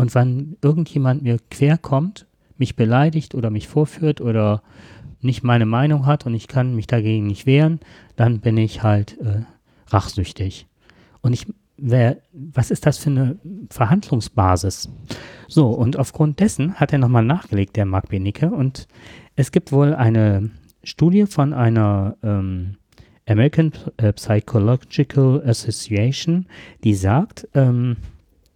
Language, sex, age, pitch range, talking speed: German, male, 40-59, 110-145 Hz, 130 wpm